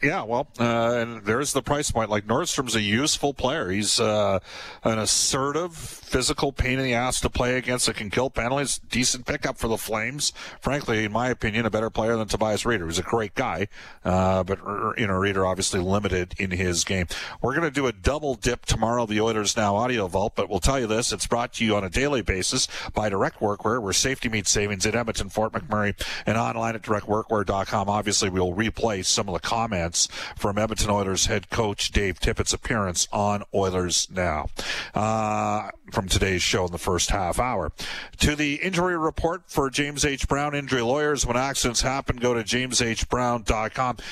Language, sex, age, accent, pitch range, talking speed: English, male, 50-69, American, 100-125 Hz, 195 wpm